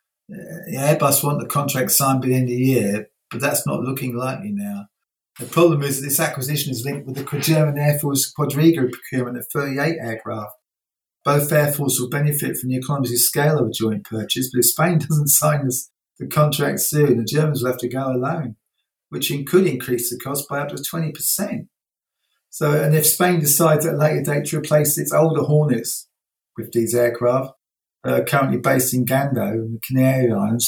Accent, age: British, 40-59